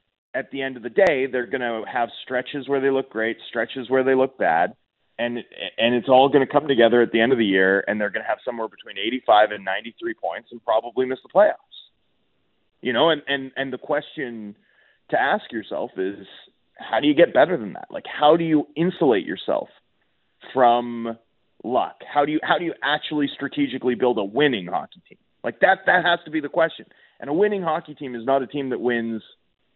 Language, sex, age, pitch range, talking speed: English, male, 30-49, 120-150 Hz, 220 wpm